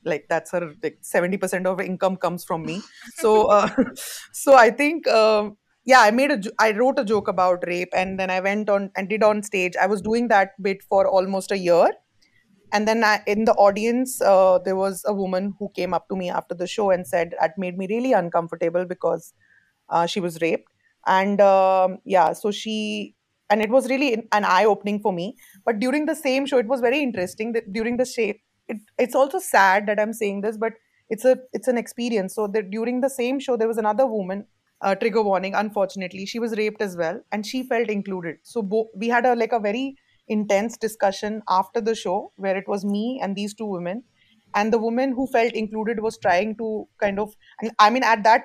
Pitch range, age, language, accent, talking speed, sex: 190-230 Hz, 20-39, English, Indian, 220 wpm, female